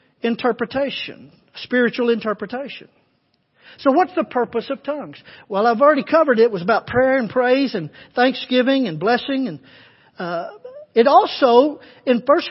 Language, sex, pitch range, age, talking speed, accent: English, male, 230-280 Hz, 50-69, 145 wpm, American